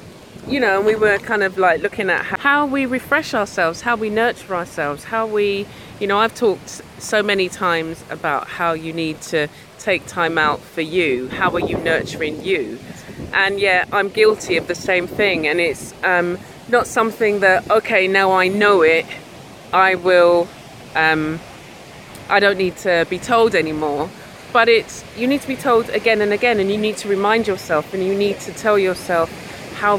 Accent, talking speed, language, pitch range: British, 190 wpm, English, 175-215 Hz